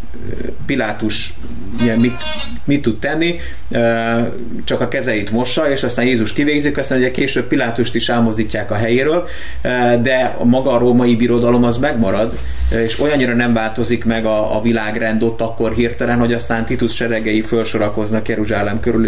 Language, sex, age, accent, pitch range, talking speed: English, male, 30-49, Finnish, 105-125 Hz, 150 wpm